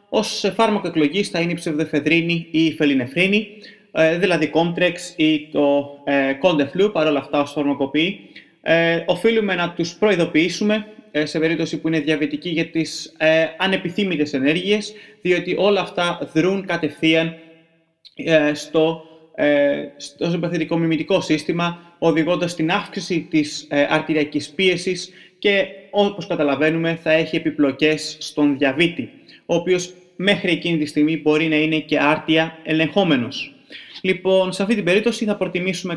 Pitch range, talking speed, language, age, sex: 150-180 Hz, 125 wpm, Greek, 30-49, male